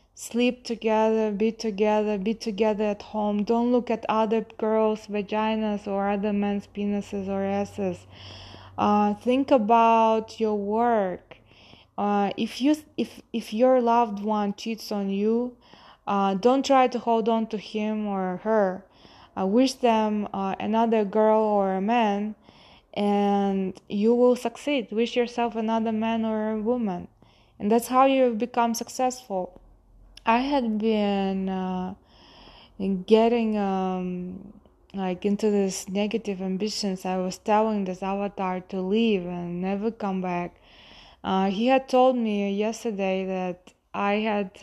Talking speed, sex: 140 wpm, female